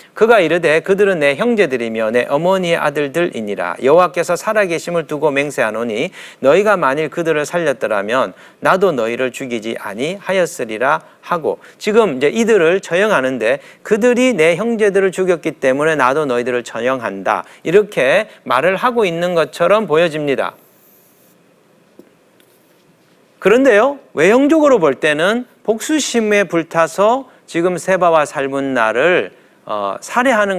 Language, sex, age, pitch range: Korean, male, 40-59, 140-220 Hz